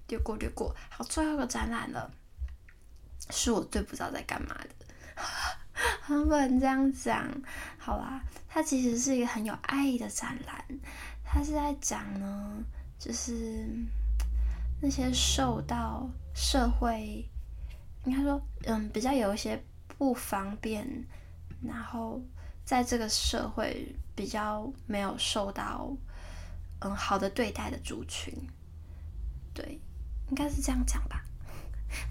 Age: 10-29